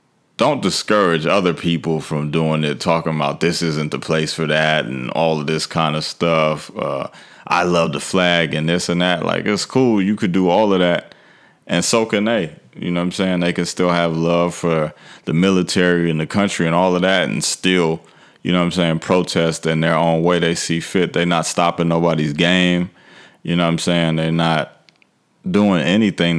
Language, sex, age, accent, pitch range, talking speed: English, male, 30-49, American, 80-90 Hz, 210 wpm